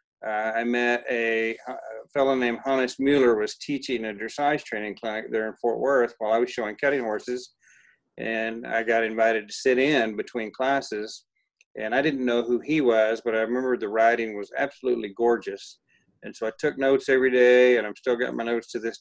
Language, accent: English, American